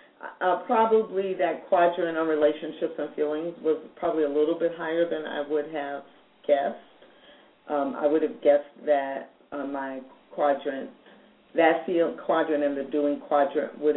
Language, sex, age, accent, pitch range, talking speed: English, female, 50-69, American, 145-170 Hz, 155 wpm